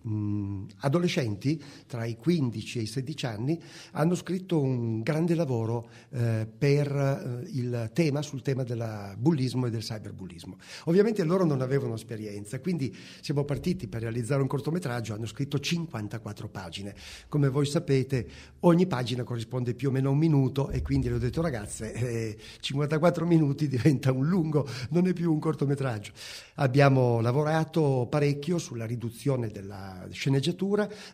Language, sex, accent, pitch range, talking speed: Italian, male, native, 115-150 Hz, 150 wpm